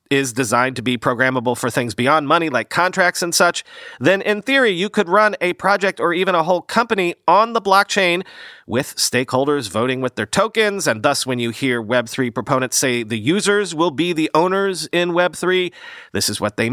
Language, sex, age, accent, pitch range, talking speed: English, male, 40-59, American, 125-185 Hz, 195 wpm